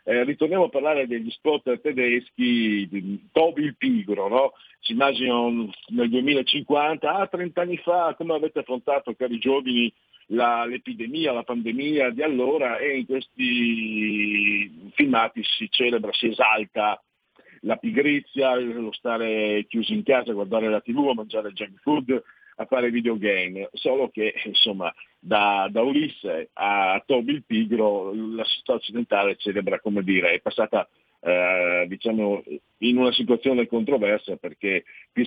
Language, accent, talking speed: Italian, native, 135 wpm